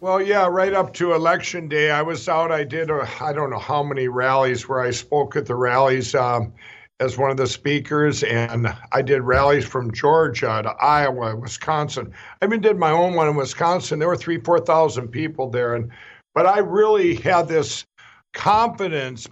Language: English